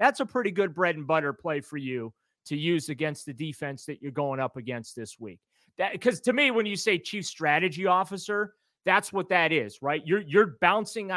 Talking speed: 215 wpm